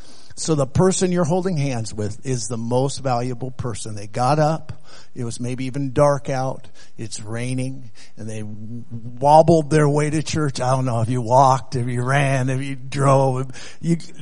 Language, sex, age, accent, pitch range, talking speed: English, male, 50-69, American, 120-140 Hz, 180 wpm